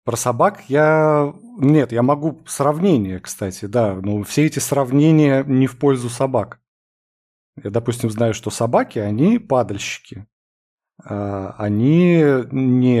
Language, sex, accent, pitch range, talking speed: Russian, male, native, 105-135 Hz, 120 wpm